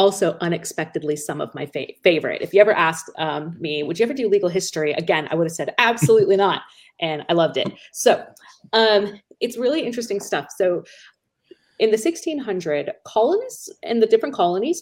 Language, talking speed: English, 180 wpm